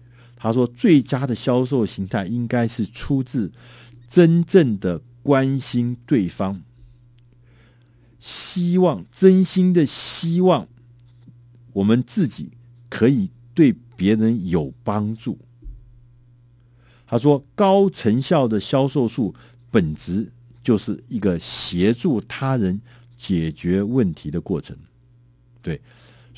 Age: 50-69